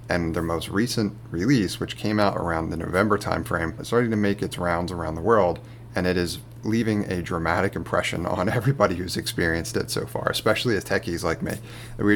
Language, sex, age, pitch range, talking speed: English, male, 30-49, 95-120 Hz, 200 wpm